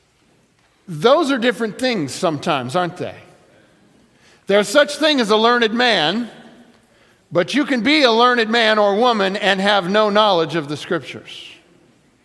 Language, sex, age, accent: English, male, 50-69, American